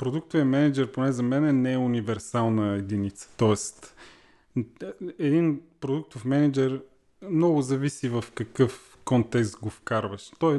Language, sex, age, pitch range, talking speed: Bulgarian, male, 30-49, 115-140 Hz, 125 wpm